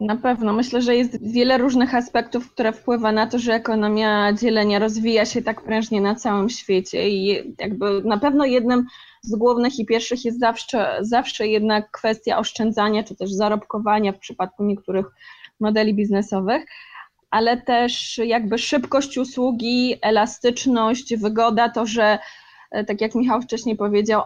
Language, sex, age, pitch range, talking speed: Polish, female, 20-39, 215-245 Hz, 145 wpm